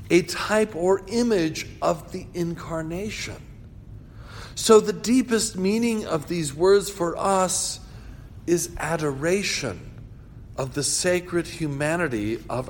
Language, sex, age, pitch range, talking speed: English, male, 50-69, 115-150 Hz, 110 wpm